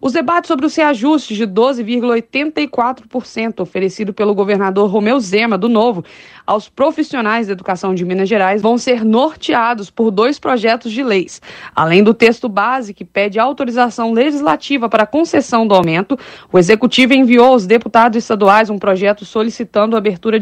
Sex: female